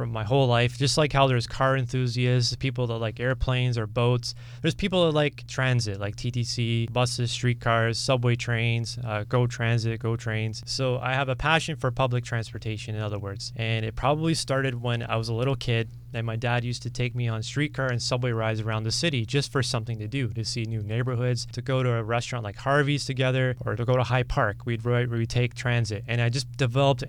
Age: 20-39